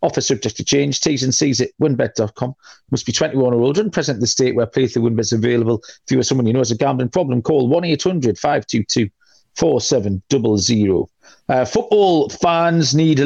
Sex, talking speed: male, 215 wpm